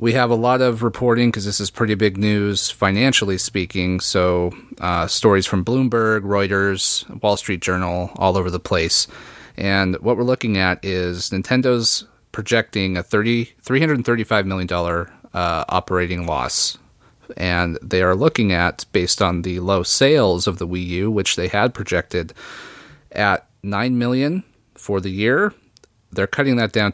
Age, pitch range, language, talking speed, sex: 30-49, 90-110 Hz, English, 160 wpm, male